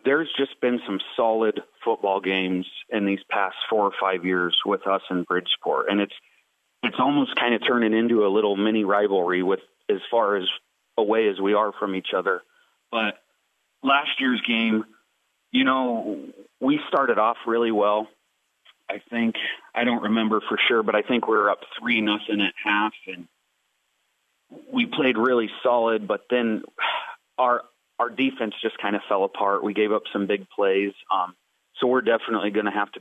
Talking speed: 175 wpm